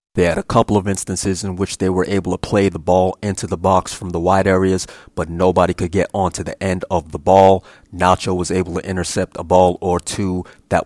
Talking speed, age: 230 wpm, 30-49